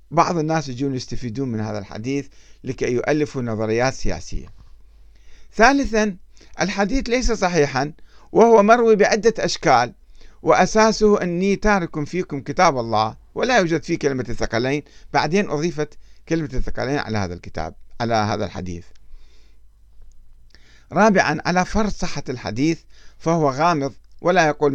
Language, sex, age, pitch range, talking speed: Arabic, male, 50-69, 115-175 Hz, 120 wpm